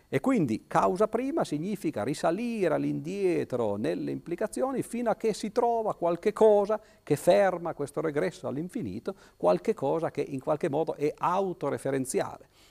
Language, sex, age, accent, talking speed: Italian, male, 50-69, native, 135 wpm